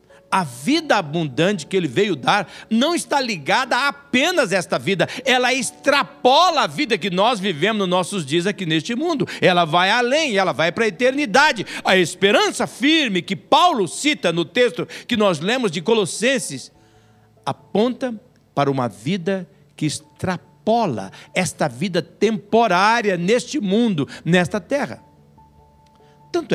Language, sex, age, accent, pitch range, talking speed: Portuguese, male, 60-79, Brazilian, 150-235 Hz, 140 wpm